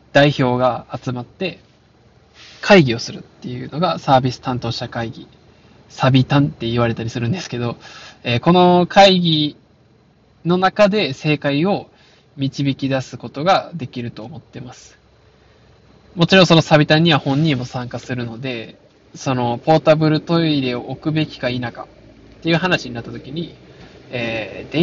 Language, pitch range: Japanese, 125-165 Hz